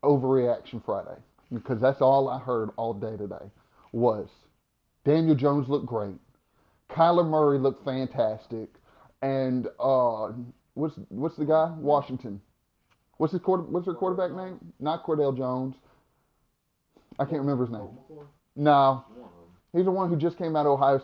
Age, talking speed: 30-49, 145 wpm